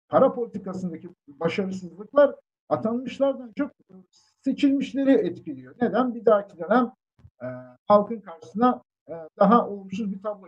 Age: 50-69